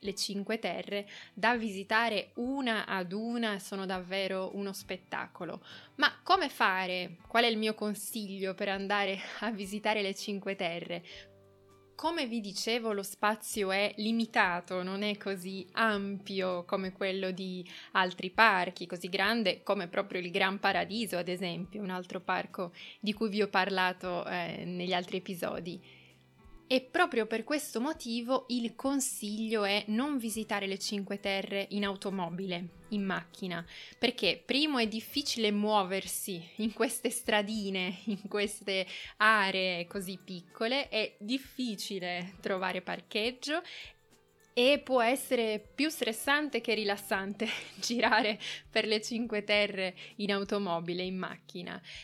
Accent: native